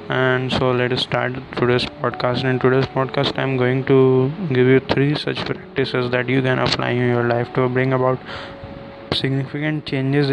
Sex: male